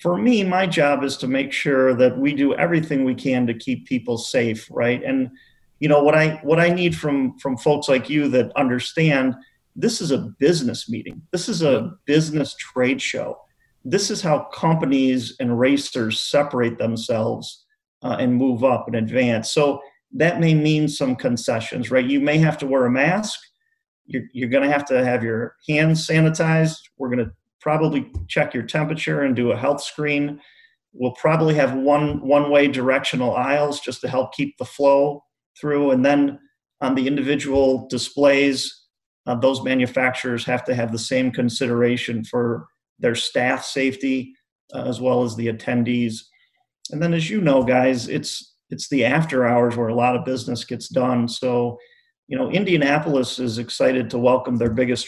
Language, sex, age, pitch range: English, male, 40-59, 125-150 Hz